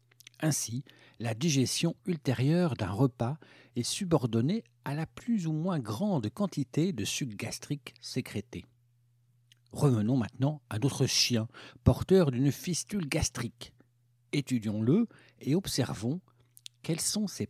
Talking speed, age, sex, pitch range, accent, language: 120 wpm, 60-79, male, 115-145 Hz, French, French